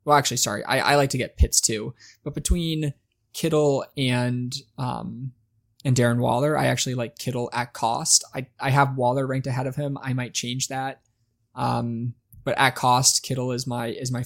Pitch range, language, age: 120-135 Hz, English, 20-39